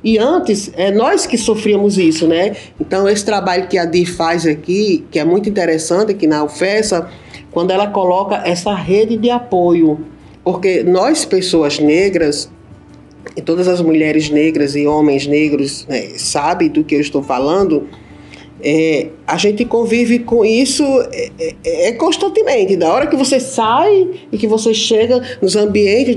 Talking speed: 160 wpm